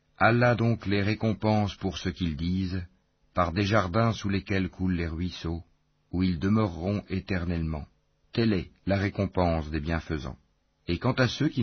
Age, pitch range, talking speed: 50-69, 85-100 Hz, 160 wpm